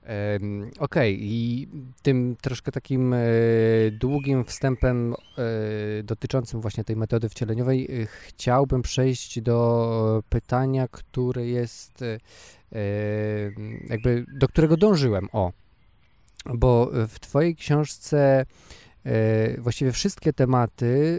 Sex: male